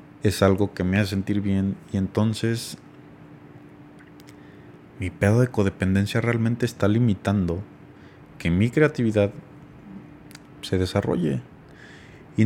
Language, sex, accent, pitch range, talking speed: Spanish, male, Mexican, 95-120 Hz, 105 wpm